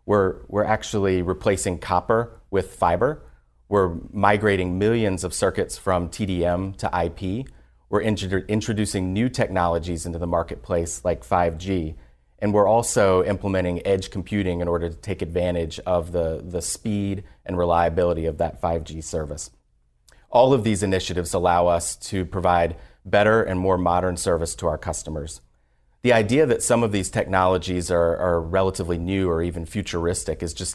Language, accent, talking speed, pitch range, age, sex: English, American, 150 wpm, 85-100 Hz, 30-49, male